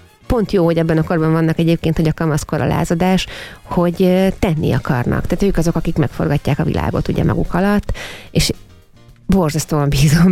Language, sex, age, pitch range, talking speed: Hungarian, female, 30-49, 155-185 Hz, 170 wpm